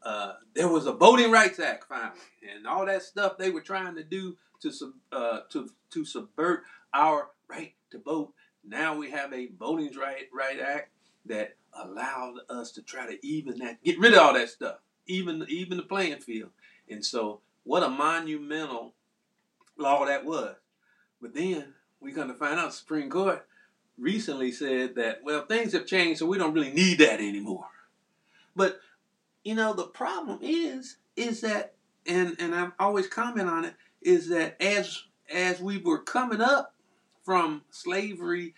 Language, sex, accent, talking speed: English, male, American, 175 wpm